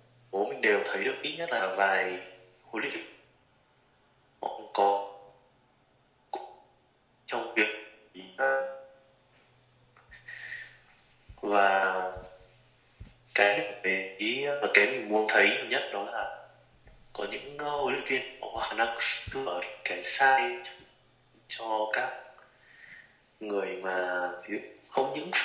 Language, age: Vietnamese, 20-39